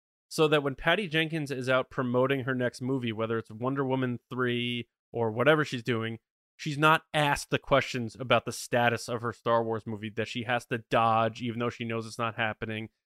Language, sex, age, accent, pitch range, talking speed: English, male, 20-39, American, 125-180 Hz, 205 wpm